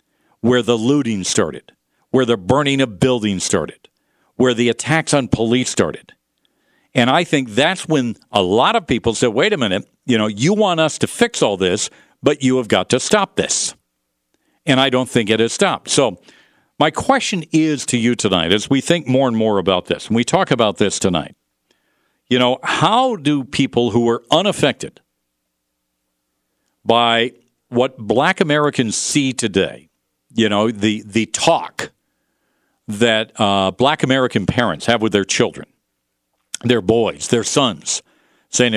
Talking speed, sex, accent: 165 wpm, male, American